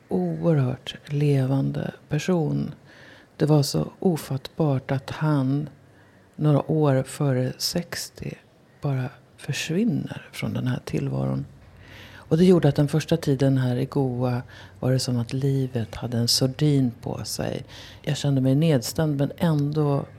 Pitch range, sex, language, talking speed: 110-150 Hz, female, Swedish, 135 wpm